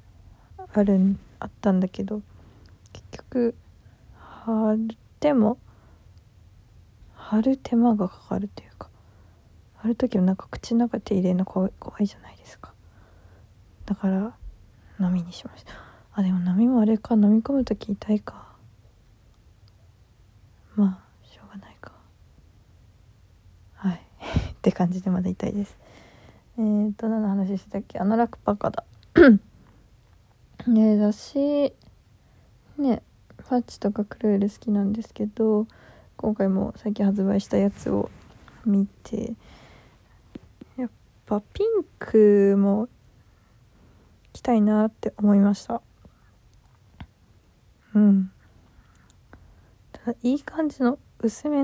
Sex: female